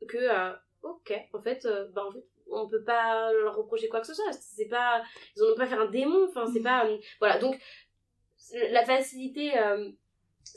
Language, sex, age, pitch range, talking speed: French, female, 20-39, 215-290 Hz, 200 wpm